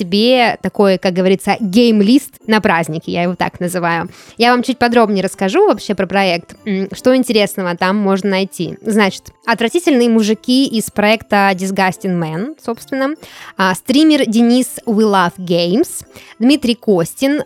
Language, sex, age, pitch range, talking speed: Russian, female, 20-39, 190-245 Hz, 135 wpm